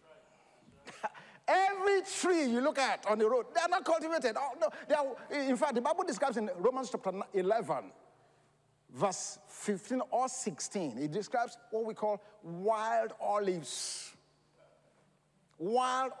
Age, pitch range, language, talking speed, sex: 50-69, 200-280 Hz, English, 135 wpm, male